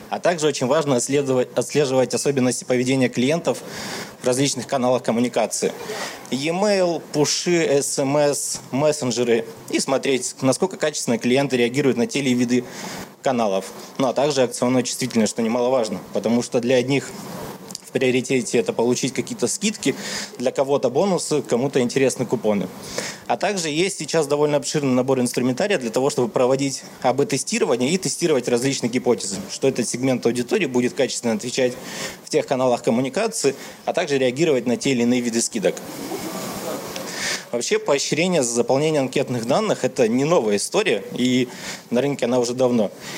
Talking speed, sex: 140 wpm, male